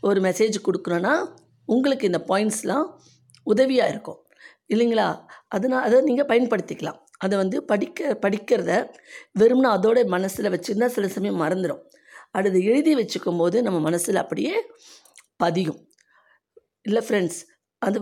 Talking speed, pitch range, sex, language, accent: 115 wpm, 170-230 Hz, female, Tamil, native